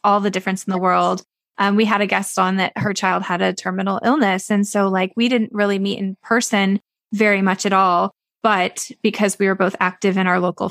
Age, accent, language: 20-39, American, English